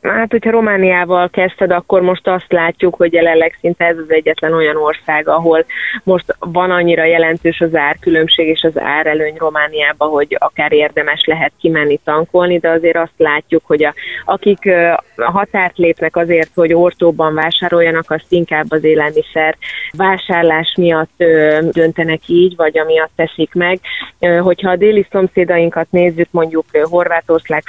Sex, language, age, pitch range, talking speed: female, Hungarian, 30-49, 155-175 Hz, 140 wpm